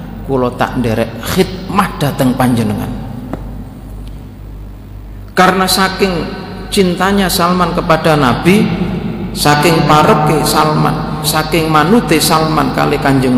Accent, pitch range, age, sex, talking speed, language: native, 120-165 Hz, 50-69, male, 75 wpm, Indonesian